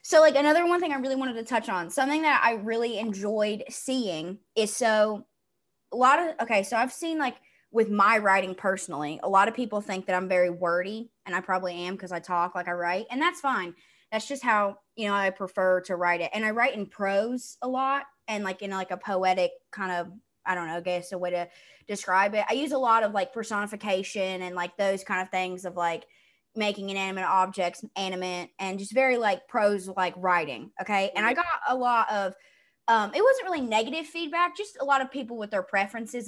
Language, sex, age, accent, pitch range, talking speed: English, female, 20-39, American, 185-255 Hz, 225 wpm